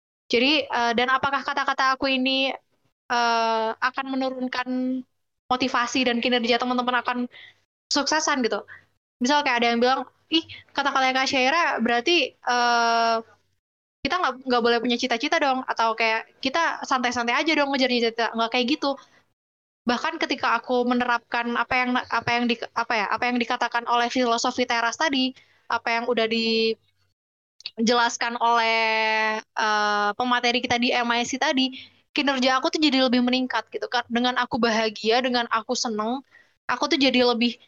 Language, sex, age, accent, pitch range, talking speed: Indonesian, female, 20-39, native, 230-260 Hz, 145 wpm